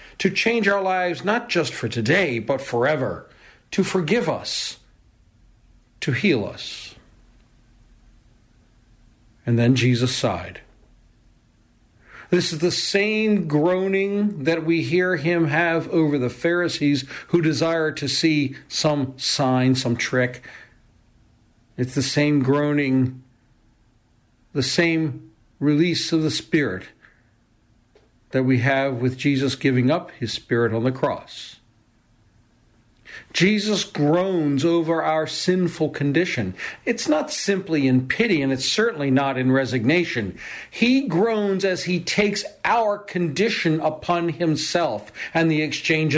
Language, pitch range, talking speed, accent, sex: English, 120-170 Hz, 120 wpm, American, male